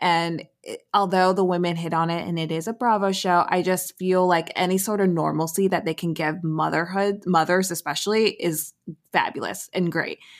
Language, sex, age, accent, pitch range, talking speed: English, female, 20-39, American, 165-195 Hz, 190 wpm